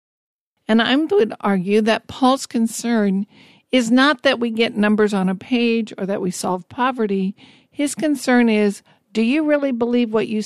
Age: 50-69